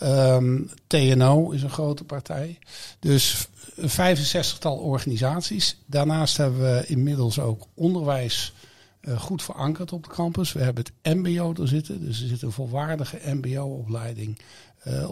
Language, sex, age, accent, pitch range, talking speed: Dutch, male, 60-79, Dutch, 125-155 Hz, 140 wpm